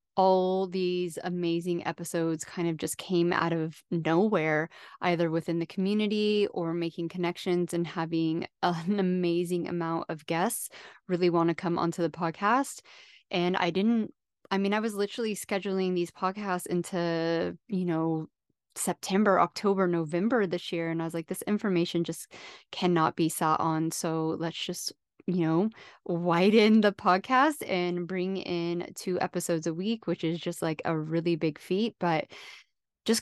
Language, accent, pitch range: English, American, 165-190 Hz